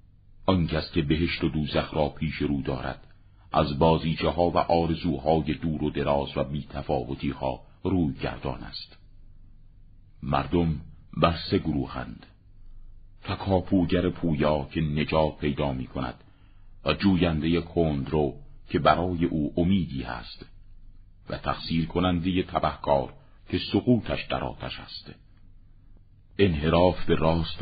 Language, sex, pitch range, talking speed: Persian, male, 75-100 Hz, 110 wpm